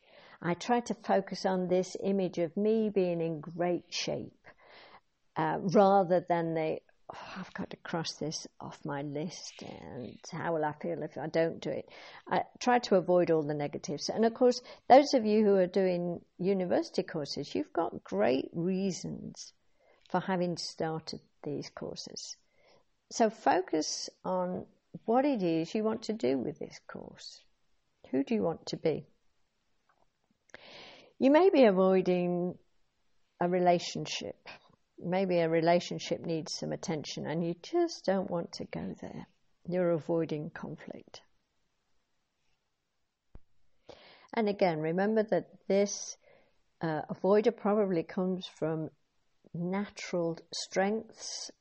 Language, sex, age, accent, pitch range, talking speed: English, female, 60-79, British, 165-205 Hz, 135 wpm